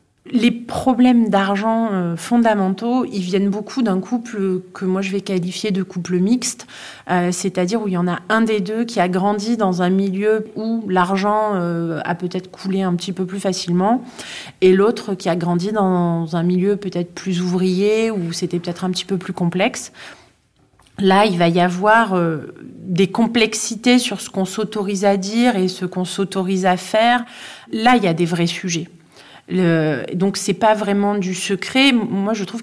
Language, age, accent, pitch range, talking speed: French, 30-49, French, 180-215 Hz, 175 wpm